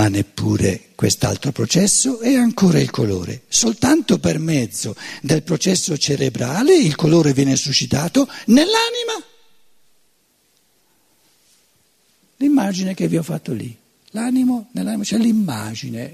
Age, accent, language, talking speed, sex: 60-79, native, Italian, 105 wpm, male